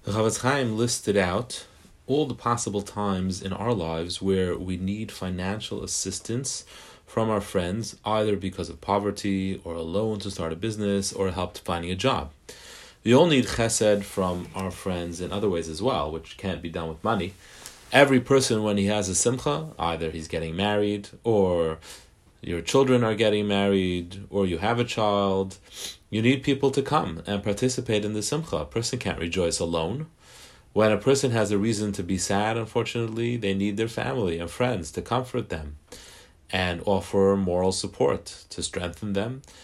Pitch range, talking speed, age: 95-115 Hz, 175 wpm, 30-49